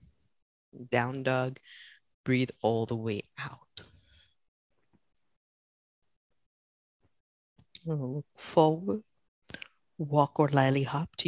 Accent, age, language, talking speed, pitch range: American, 50-69, English, 70 wpm, 100-150 Hz